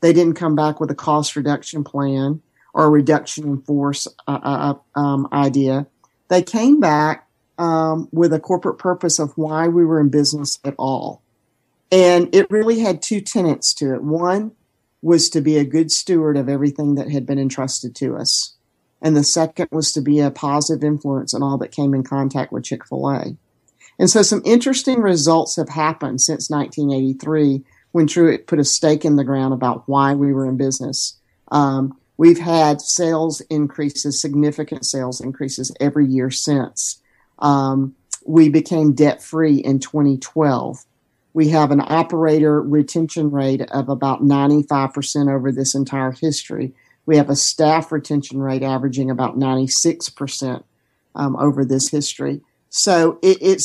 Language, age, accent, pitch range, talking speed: English, 50-69, American, 135-160 Hz, 155 wpm